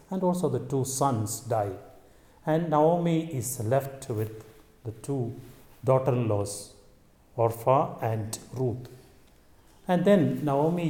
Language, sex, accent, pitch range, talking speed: English, male, Indian, 120-150 Hz, 110 wpm